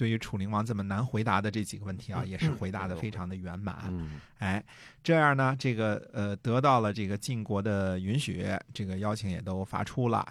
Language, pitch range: Chinese, 95-120 Hz